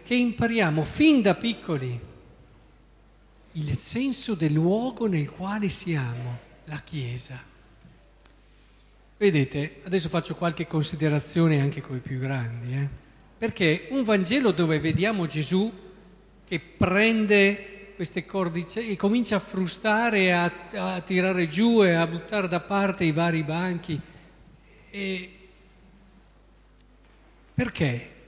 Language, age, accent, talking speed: Italian, 50-69, native, 110 wpm